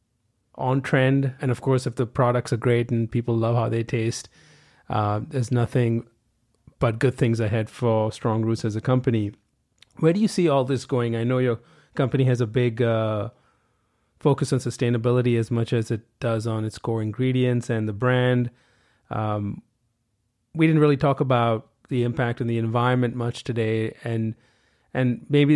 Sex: male